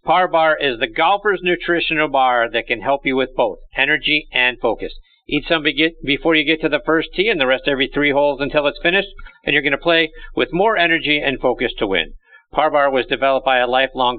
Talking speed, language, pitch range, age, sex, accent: 225 wpm, English, 130-180 Hz, 50-69, male, American